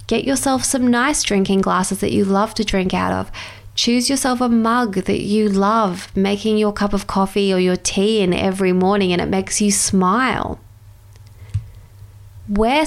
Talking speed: 175 wpm